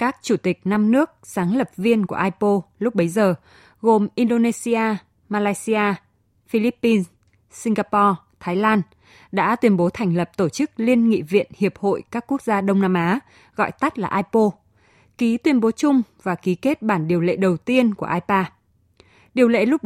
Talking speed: 180 wpm